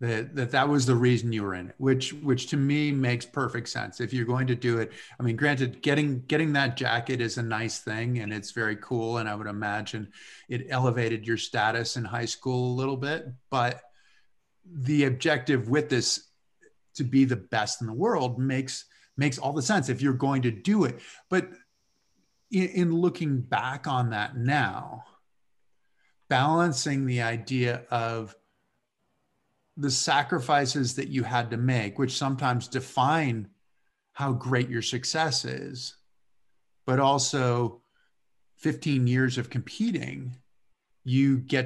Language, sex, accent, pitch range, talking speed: English, male, American, 120-140 Hz, 155 wpm